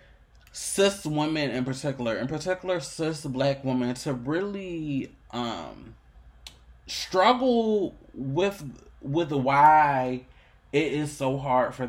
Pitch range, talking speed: 120-145 Hz, 105 wpm